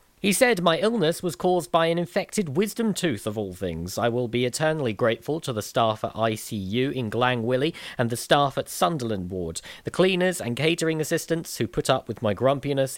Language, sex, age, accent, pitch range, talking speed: English, male, 40-59, British, 115-155 Hz, 200 wpm